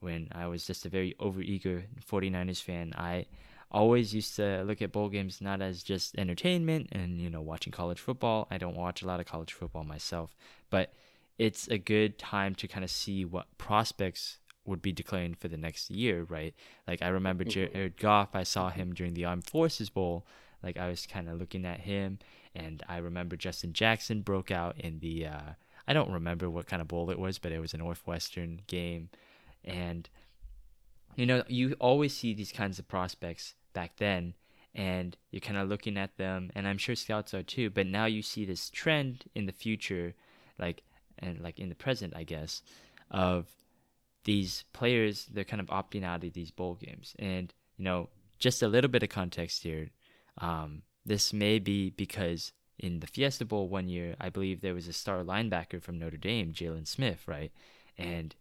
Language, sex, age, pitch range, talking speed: English, male, 20-39, 85-105 Hz, 195 wpm